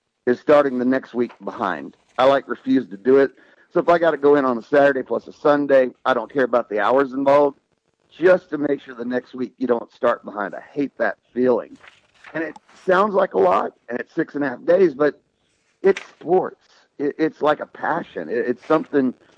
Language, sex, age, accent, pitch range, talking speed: English, male, 50-69, American, 125-150 Hz, 215 wpm